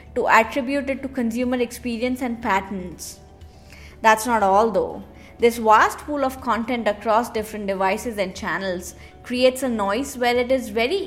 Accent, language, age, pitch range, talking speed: Indian, English, 20-39, 210-260 Hz, 155 wpm